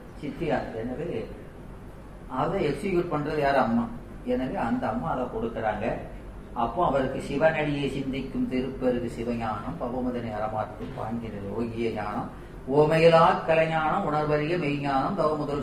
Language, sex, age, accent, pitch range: Tamil, female, 30-49, native, 125-170 Hz